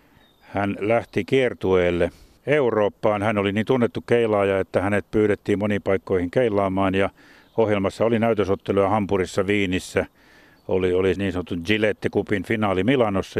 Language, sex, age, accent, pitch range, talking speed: Finnish, male, 50-69, native, 95-115 Hz, 125 wpm